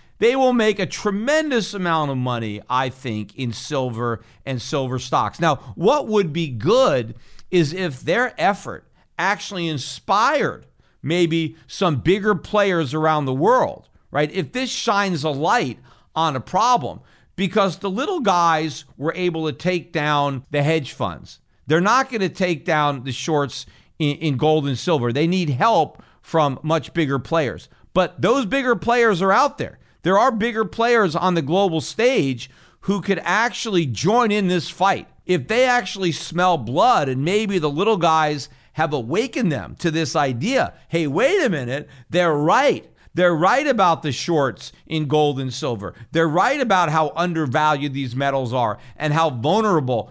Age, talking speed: 50-69, 165 wpm